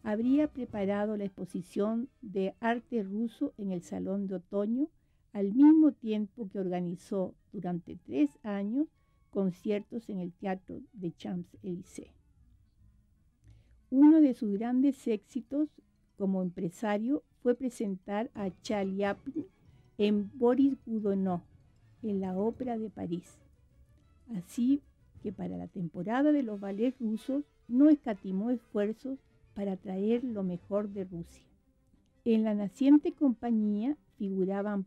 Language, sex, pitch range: Spanish, female, 190-255 Hz